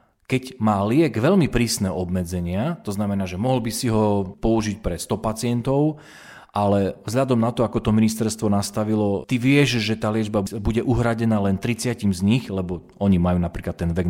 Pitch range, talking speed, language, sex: 95-125 Hz, 180 wpm, Slovak, male